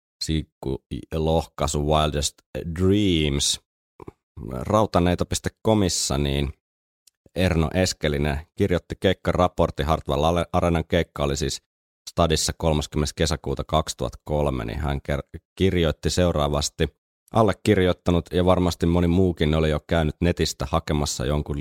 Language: Finnish